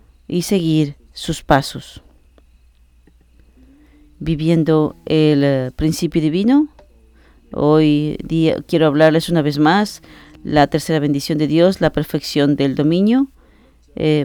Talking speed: 105 wpm